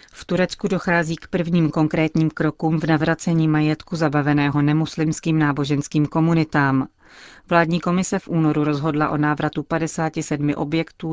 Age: 30-49